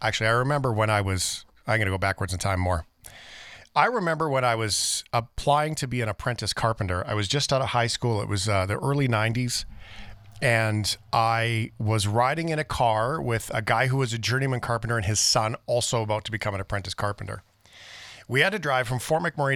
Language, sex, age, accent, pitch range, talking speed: English, male, 40-59, American, 105-130 Hz, 215 wpm